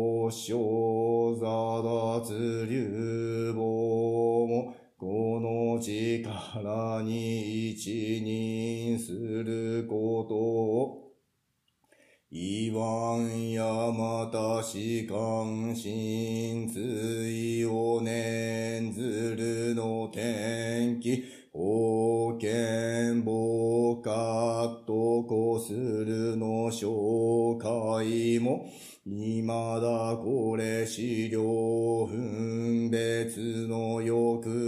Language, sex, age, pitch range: Japanese, male, 40-59, 110-115 Hz